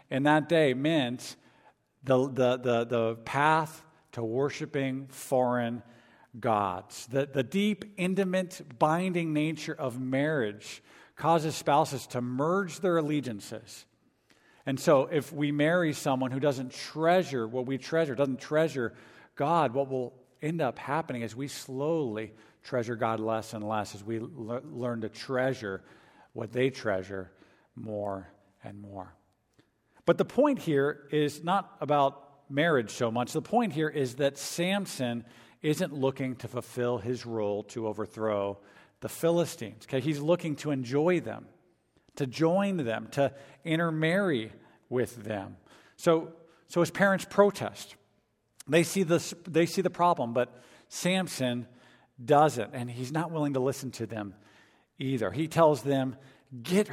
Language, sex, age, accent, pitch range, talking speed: English, male, 50-69, American, 115-155 Hz, 140 wpm